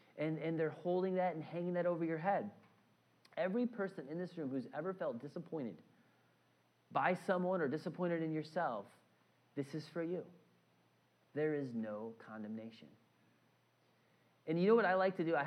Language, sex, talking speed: English, male, 165 wpm